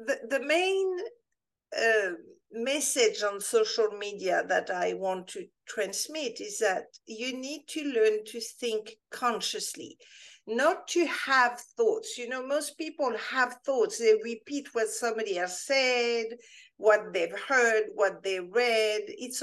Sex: female